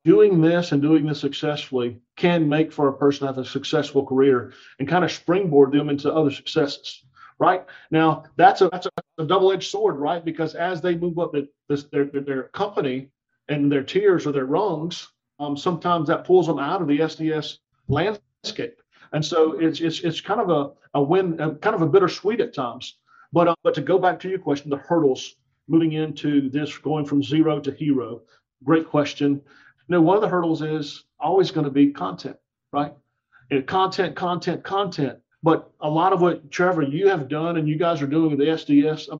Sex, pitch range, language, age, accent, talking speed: male, 145-175 Hz, English, 40-59, American, 200 wpm